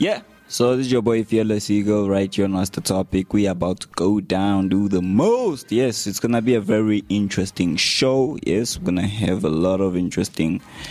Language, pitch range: English, 90-120 Hz